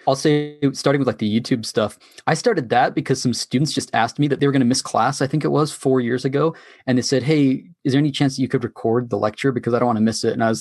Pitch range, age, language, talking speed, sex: 125-155 Hz, 20-39, English, 310 wpm, male